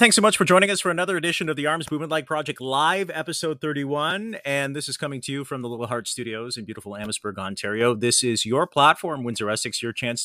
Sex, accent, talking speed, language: male, American, 240 wpm, English